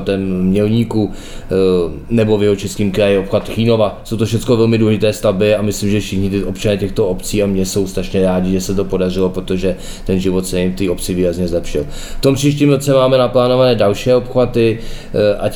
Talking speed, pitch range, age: 195 wpm, 95-110 Hz, 20-39